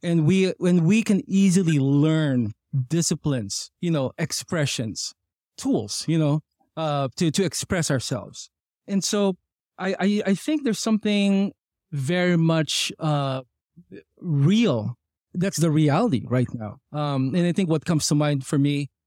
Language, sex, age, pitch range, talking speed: English, male, 20-39, 135-175 Hz, 145 wpm